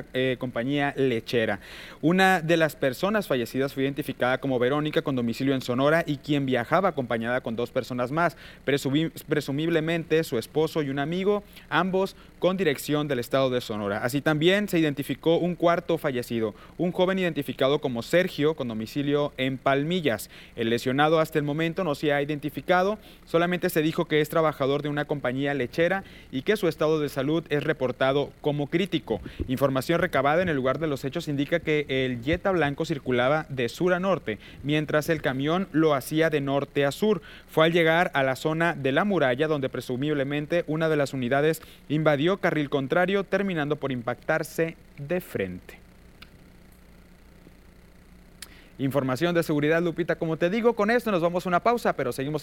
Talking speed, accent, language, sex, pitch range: 170 wpm, Mexican, Spanish, male, 135-170 Hz